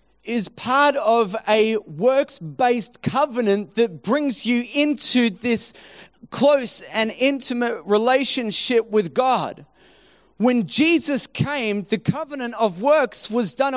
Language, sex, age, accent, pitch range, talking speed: English, male, 30-49, Australian, 230-285 Hz, 115 wpm